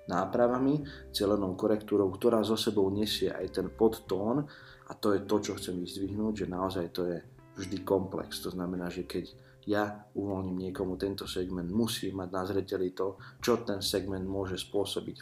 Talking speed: 165 wpm